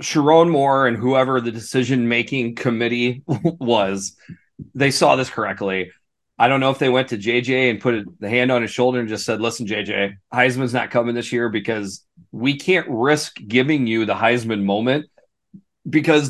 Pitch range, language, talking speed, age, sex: 120-160 Hz, English, 175 wpm, 30-49, male